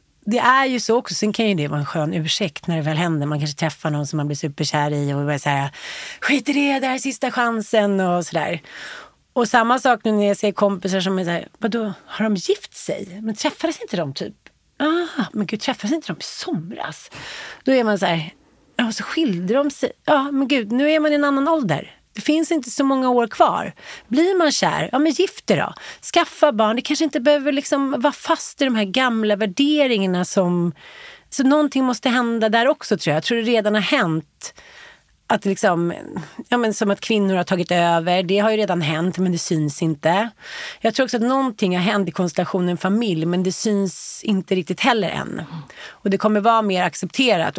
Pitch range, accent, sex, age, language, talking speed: 180-270 Hz, native, female, 30-49, Swedish, 205 wpm